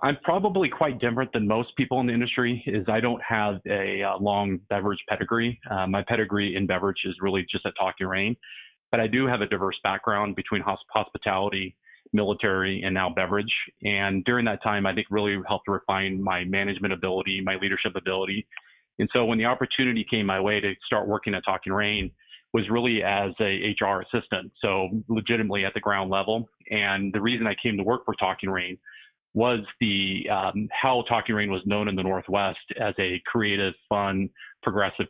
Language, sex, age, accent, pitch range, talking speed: English, male, 30-49, American, 95-110 Hz, 190 wpm